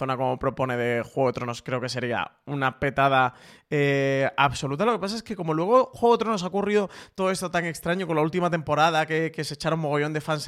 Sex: male